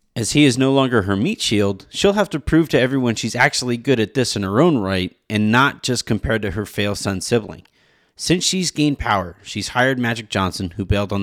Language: English